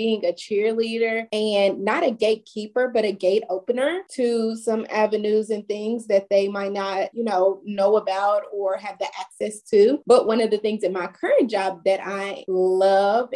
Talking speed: 185 wpm